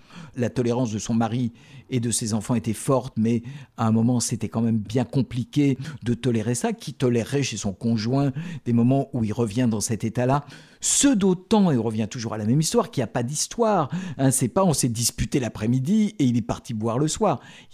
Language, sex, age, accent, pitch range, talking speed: French, male, 50-69, French, 115-170 Hz, 225 wpm